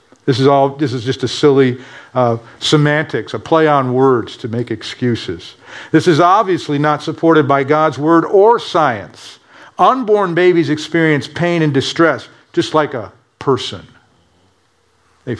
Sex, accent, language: male, American, English